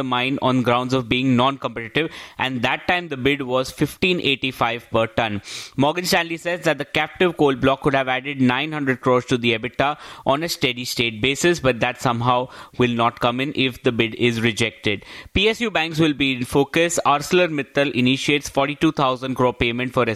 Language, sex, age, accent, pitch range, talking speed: English, male, 20-39, Indian, 125-155 Hz, 180 wpm